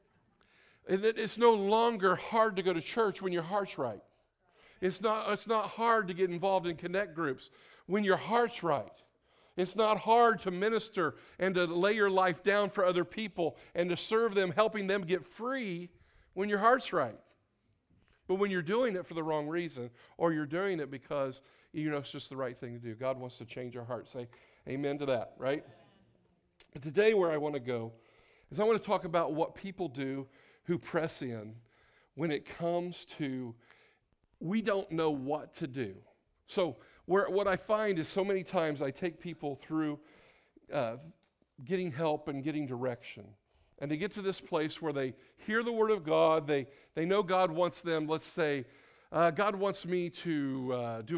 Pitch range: 145-200 Hz